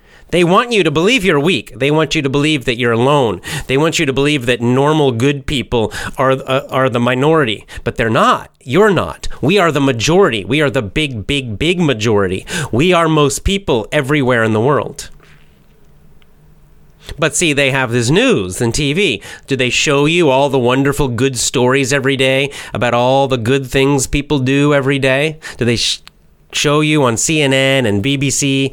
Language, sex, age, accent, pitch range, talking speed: English, male, 30-49, American, 120-145 Hz, 185 wpm